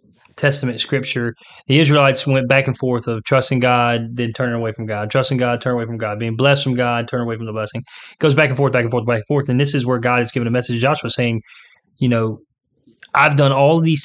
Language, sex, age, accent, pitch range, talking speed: English, male, 20-39, American, 125-145 Hz, 250 wpm